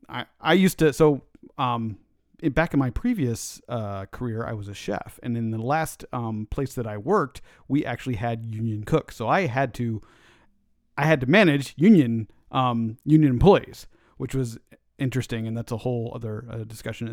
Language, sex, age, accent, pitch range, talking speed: English, male, 40-59, American, 120-155 Hz, 185 wpm